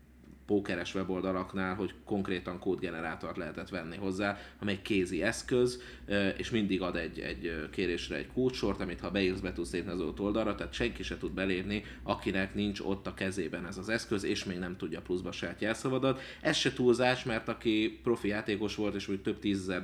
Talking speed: 175 wpm